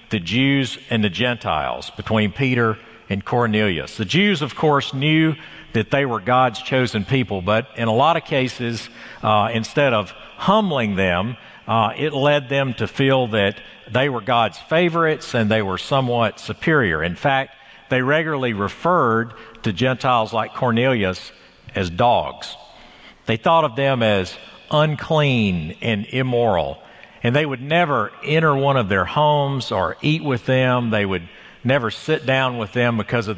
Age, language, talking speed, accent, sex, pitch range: 50-69, English, 160 wpm, American, male, 110-140 Hz